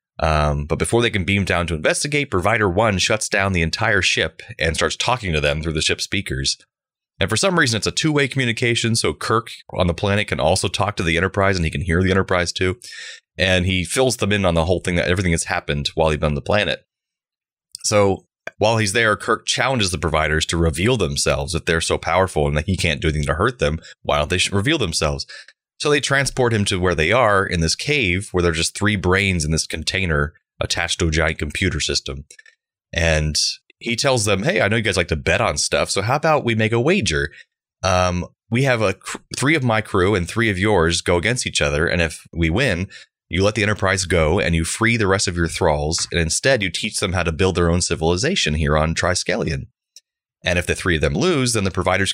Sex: male